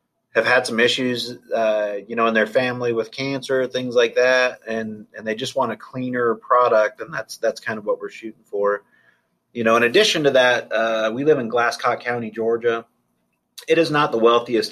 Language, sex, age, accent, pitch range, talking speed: English, male, 30-49, American, 110-135 Hz, 205 wpm